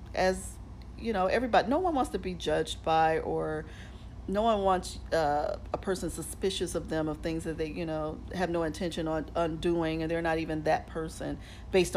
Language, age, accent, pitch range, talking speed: English, 40-59, American, 150-185 Hz, 195 wpm